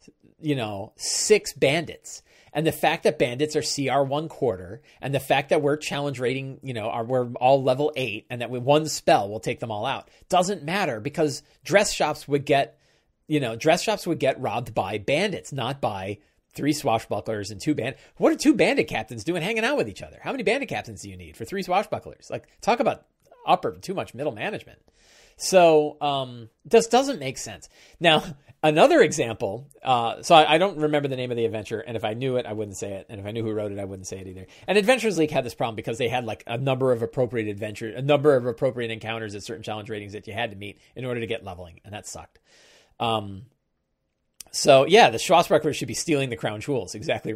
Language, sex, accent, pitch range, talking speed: English, male, American, 110-150 Hz, 225 wpm